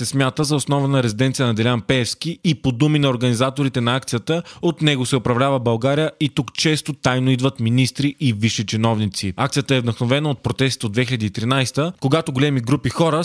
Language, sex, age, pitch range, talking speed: Bulgarian, male, 20-39, 120-145 Hz, 185 wpm